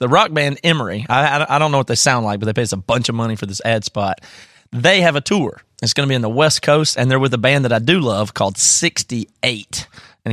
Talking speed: 280 wpm